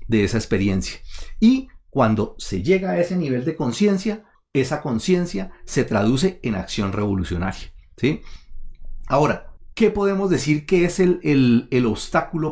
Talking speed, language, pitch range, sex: 145 wpm, Spanish, 110-170 Hz, male